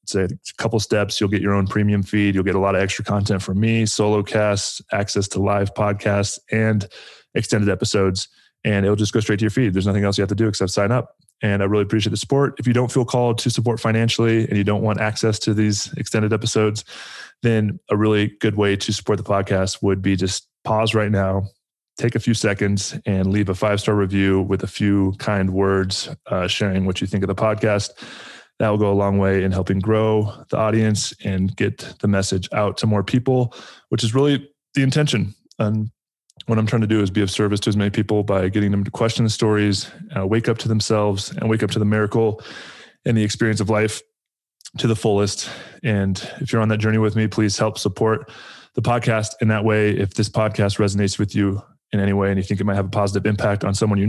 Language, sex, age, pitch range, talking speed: English, male, 20-39, 100-110 Hz, 230 wpm